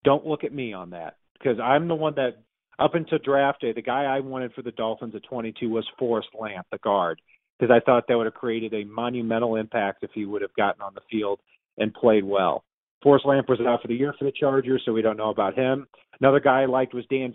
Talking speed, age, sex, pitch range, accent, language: 255 wpm, 40-59, male, 115-135 Hz, American, English